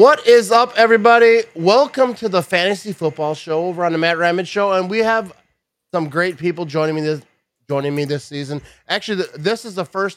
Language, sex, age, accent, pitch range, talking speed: English, male, 30-49, American, 140-195 Hz, 205 wpm